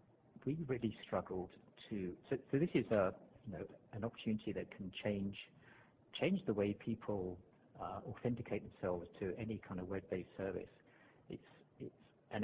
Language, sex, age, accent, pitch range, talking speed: English, male, 50-69, British, 95-115 Hz, 155 wpm